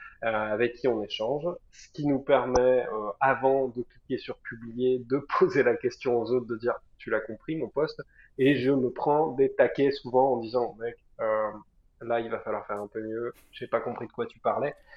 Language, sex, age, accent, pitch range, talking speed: French, male, 20-39, French, 115-140 Hz, 215 wpm